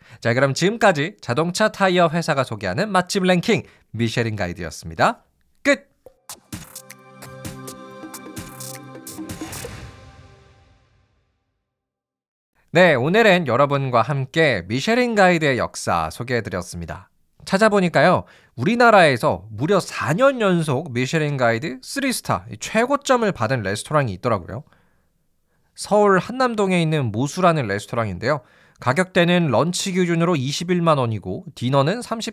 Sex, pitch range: male, 110-185 Hz